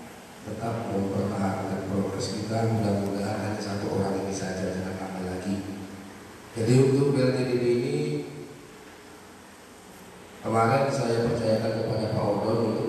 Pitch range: 100-115 Hz